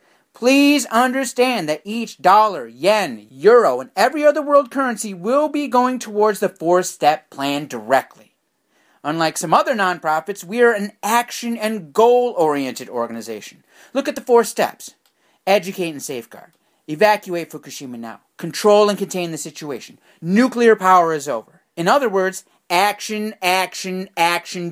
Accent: American